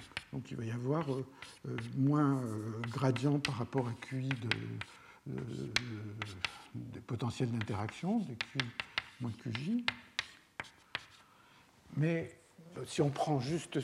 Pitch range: 130-160 Hz